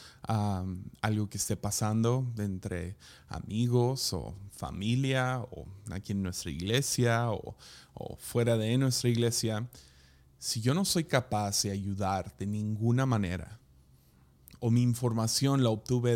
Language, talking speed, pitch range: Spanish, 130 wpm, 90-120 Hz